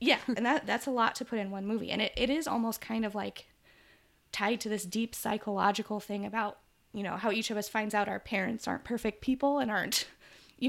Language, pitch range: English, 200-245 Hz